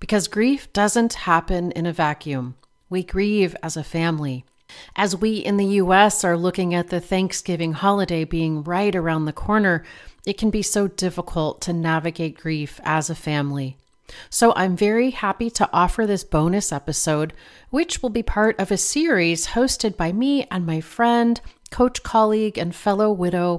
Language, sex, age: English, female, 40-59